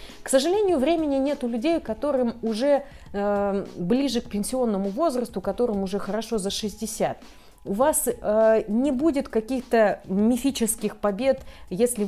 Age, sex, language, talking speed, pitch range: 30-49, female, Russian, 135 wpm, 205-265 Hz